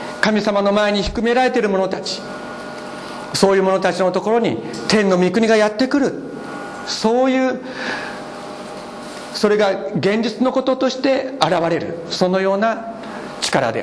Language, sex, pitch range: Japanese, male, 170-225 Hz